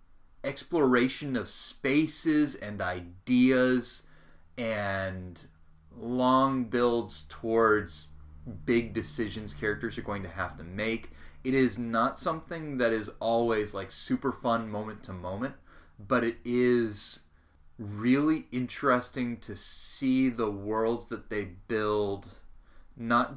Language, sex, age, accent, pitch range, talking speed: English, male, 30-49, American, 95-120 Hz, 115 wpm